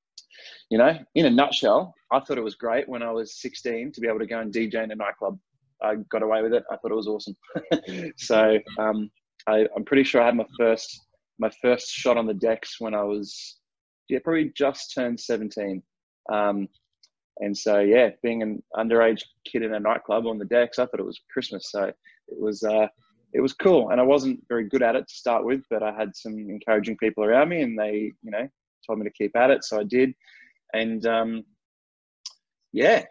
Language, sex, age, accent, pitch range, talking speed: English, male, 20-39, Australian, 105-125 Hz, 215 wpm